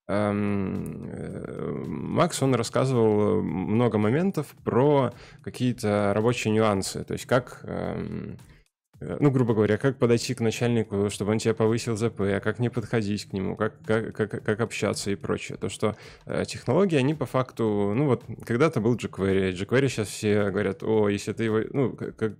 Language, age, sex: Russian, 20-39, male